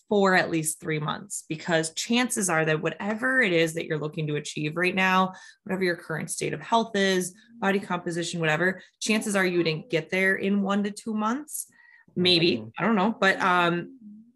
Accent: American